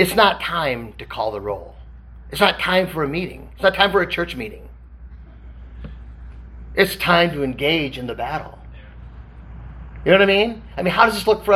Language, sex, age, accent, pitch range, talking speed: English, male, 40-59, American, 130-175 Hz, 200 wpm